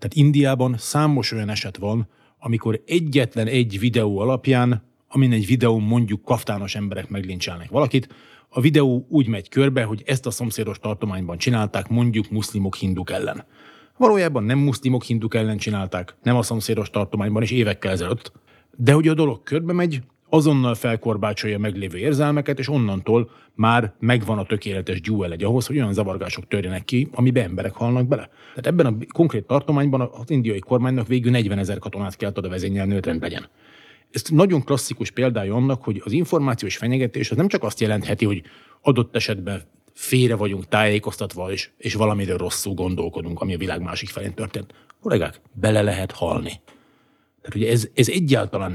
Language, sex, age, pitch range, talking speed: Hungarian, male, 30-49, 100-130 Hz, 160 wpm